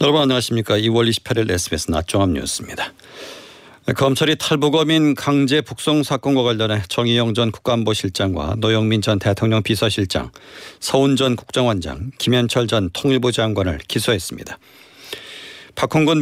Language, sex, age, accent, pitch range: Korean, male, 40-59, native, 105-135 Hz